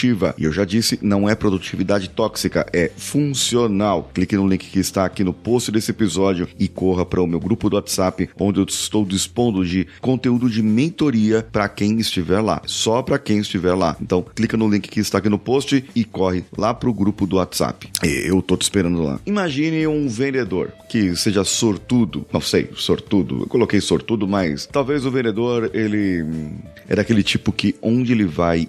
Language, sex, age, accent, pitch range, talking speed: Portuguese, male, 30-49, Brazilian, 90-115 Hz, 190 wpm